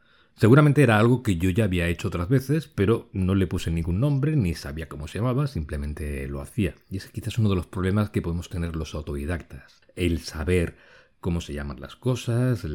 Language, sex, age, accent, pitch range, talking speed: Spanish, male, 40-59, Spanish, 80-110 Hz, 205 wpm